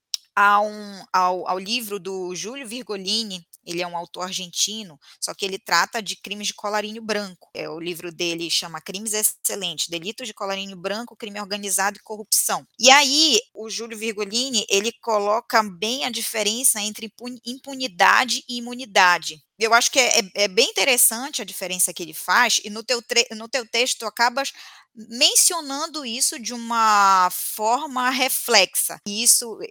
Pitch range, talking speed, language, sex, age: 185-235 Hz, 160 wpm, Portuguese, female, 10-29